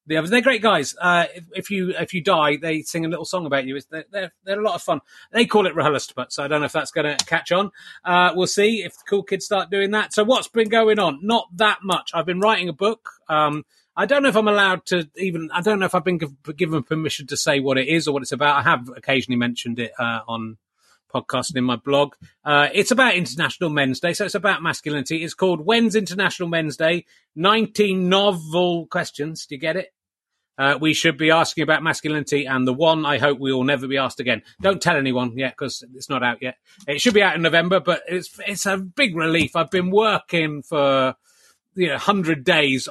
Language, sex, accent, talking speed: English, male, British, 240 wpm